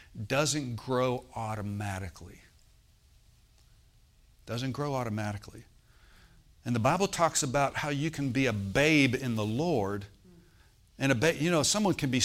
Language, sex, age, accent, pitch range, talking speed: English, male, 60-79, American, 110-140 Hz, 135 wpm